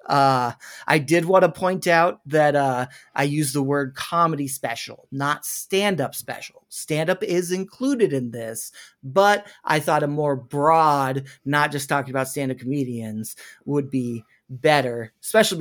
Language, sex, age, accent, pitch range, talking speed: English, male, 30-49, American, 130-150 Hz, 150 wpm